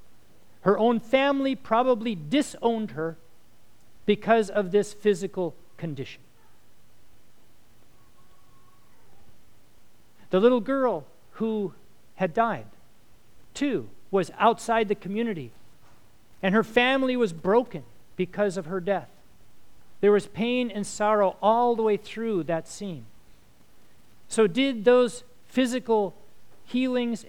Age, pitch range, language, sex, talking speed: 50-69, 140-225 Hz, English, male, 105 wpm